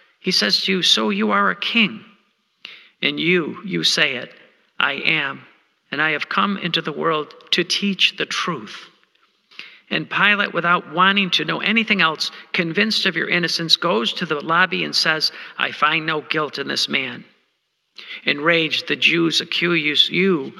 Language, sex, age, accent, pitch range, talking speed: English, male, 50-69, American, 155-185 Hz, 165 wpm